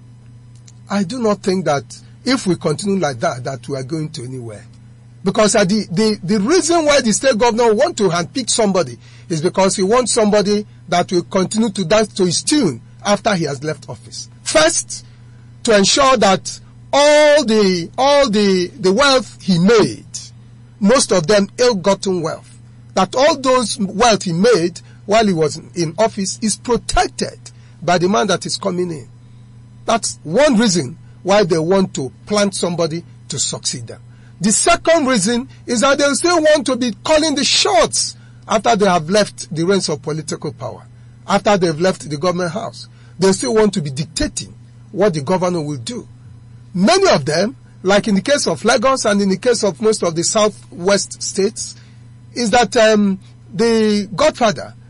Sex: male